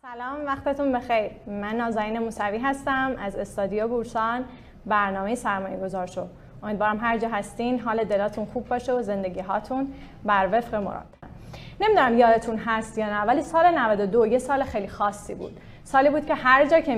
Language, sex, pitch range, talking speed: Persian, female, 200-245 Hz, 165 wpm